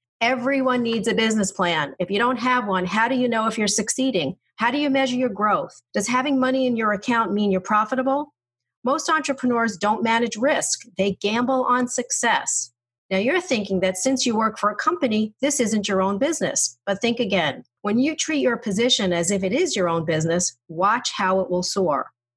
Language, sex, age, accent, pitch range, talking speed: English, female, 40-59, American, 180-255 Hz, 205 wpm